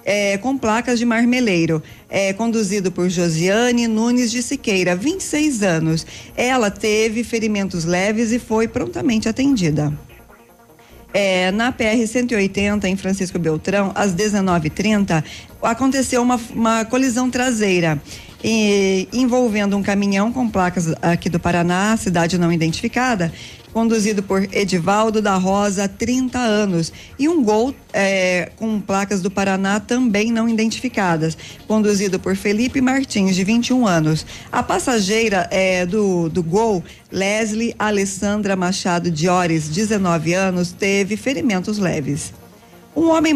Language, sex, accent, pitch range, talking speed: Portuguese, female, Brazilian, 185-230 Hz, 125 wpm